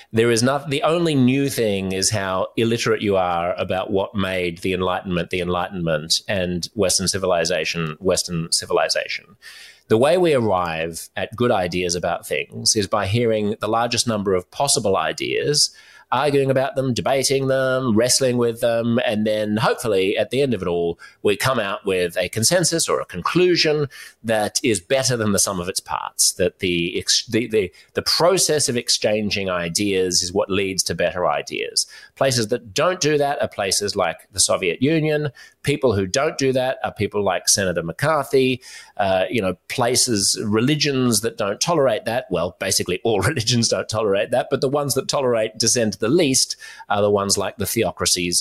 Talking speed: 175 wpm